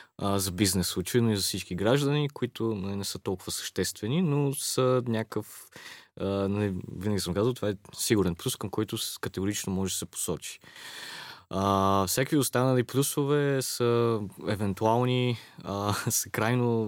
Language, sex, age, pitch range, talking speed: Bulgarian, male, 20-39, 95-115 Hz, 145 wpm